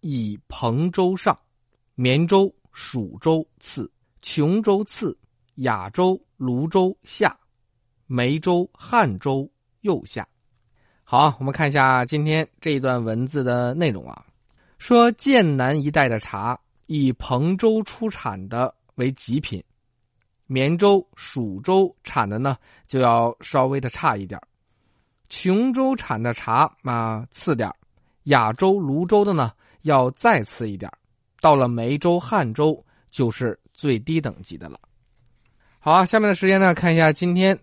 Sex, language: male, Chinese